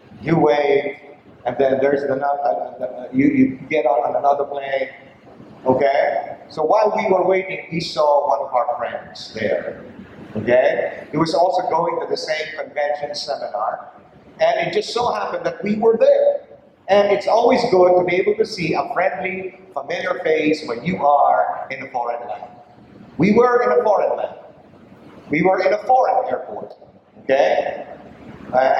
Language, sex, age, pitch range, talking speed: English, male, 50-69, 145-205 Hz, 170 wpm